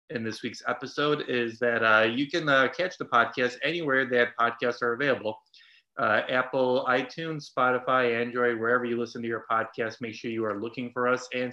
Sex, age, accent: male, 30-49, American